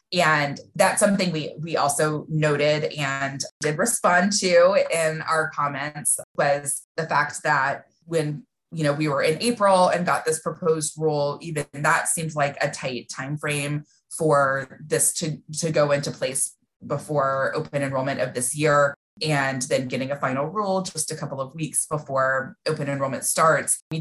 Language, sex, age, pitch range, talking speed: English, female, 20-39, 140-160 Hz, 165 wpm